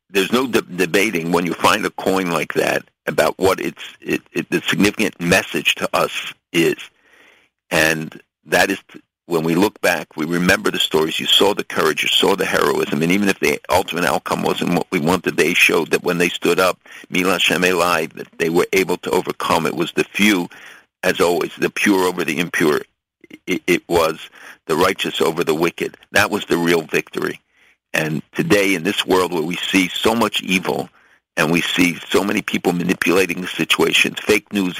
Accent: American